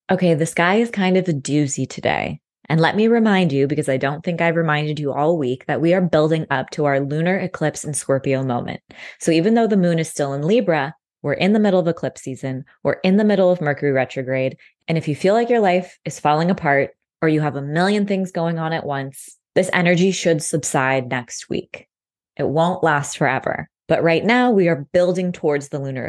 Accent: American